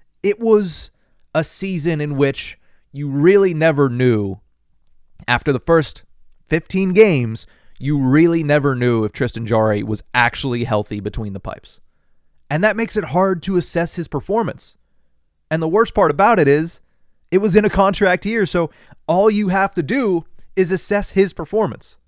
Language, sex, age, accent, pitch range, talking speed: English, male, 30-49, American, 115-180 Hz, 165 wpm